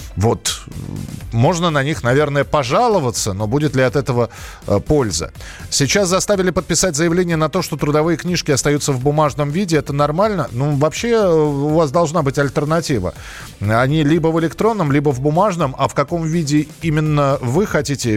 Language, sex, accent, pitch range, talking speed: Russian, male, native, 130-175 Hz, 160 wpm